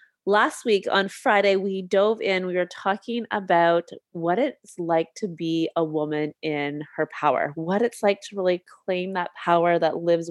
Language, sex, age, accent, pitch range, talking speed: English, female, 30-49, American, 165-190 Hz, 180 wpm